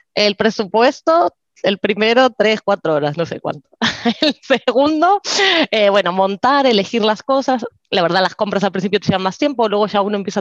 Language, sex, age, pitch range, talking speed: Spanish, female, 20-39, 185-235 Hz, 185 wpm